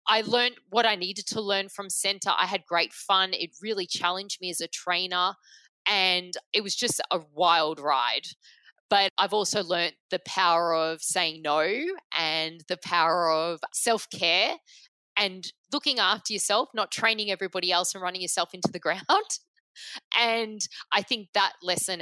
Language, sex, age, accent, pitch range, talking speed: English, female, 20-39, Australian, 170-210 Hz, 165 wpm